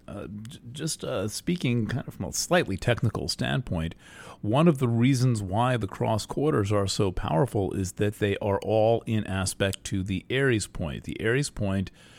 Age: 40-59